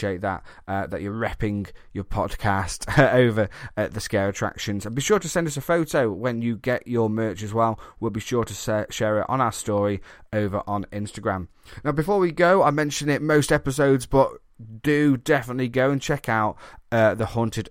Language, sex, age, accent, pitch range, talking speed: English, male, 30-49, British, 100-130 Hz, 205 wpm